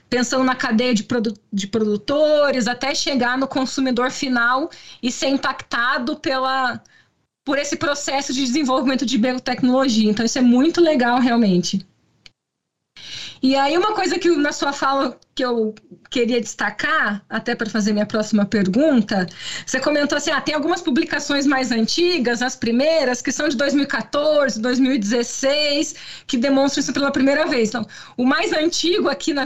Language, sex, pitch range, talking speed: Portuguese, female, 240-295 Hz, 150 wpm